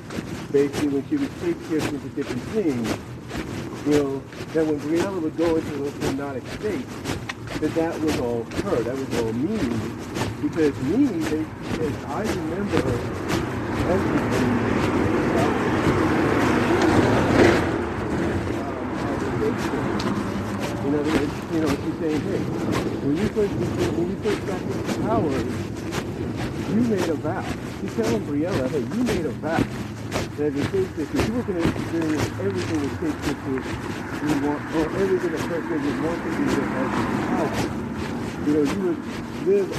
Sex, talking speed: male, 140 wpm